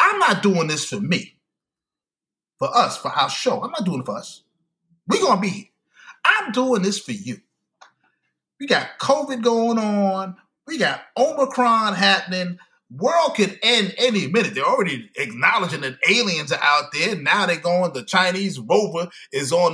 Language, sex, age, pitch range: English, male, 30-49, 165-220 Hz